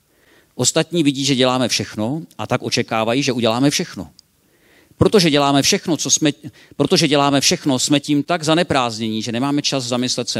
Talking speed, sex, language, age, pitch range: 160 wpm, male, Czech, 50-69, 110-145 Hz